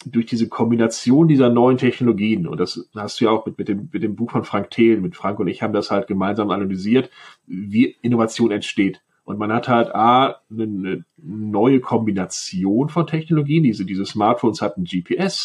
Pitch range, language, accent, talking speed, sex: 105-130 Hz, German, German, 190 wpm, male